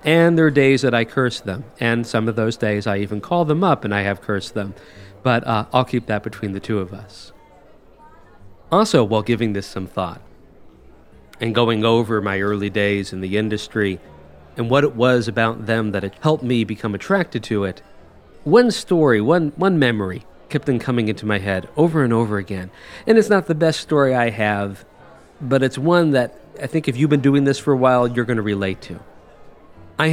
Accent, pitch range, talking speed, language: American, 100-125 Hz, 210 wpm, English